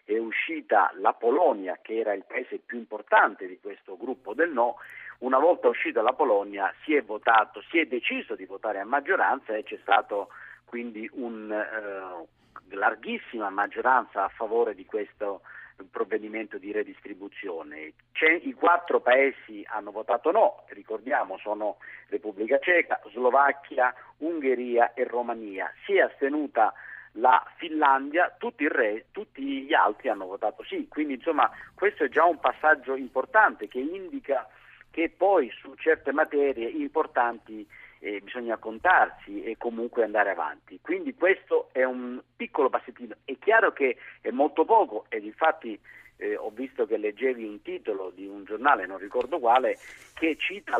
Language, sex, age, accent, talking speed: Italian, male, 50-69, native, 150 wpm